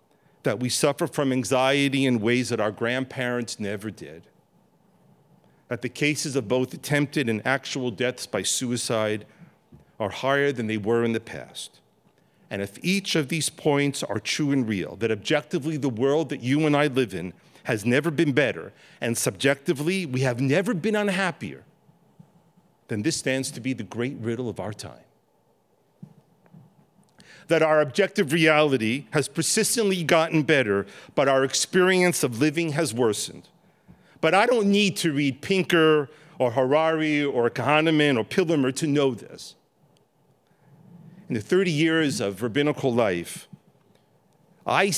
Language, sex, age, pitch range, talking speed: English, male, 50-69, 120-155 Hz, 150 wpm